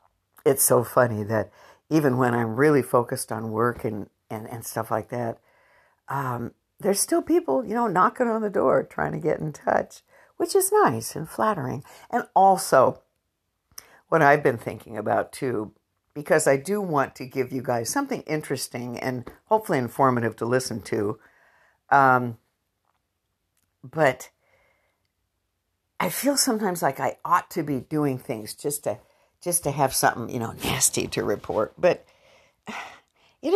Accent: American